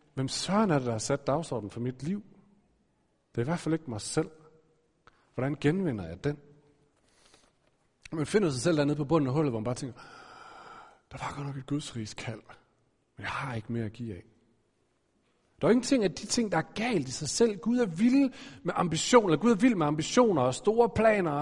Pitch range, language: 125-180 Hz, Danish